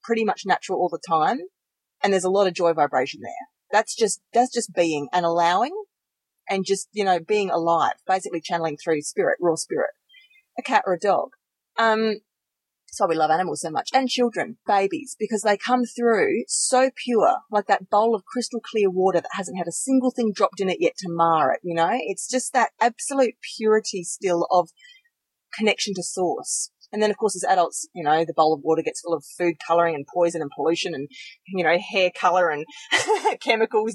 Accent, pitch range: Australian, 180-240 Hz